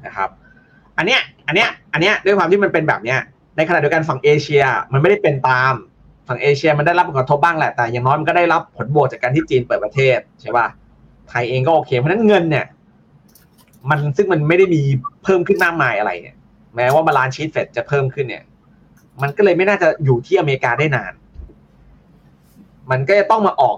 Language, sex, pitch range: Thai, male, 130-170 Hz